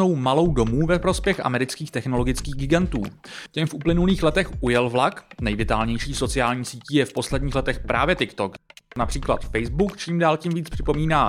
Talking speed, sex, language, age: 155 wpm, male, Czech, 30-49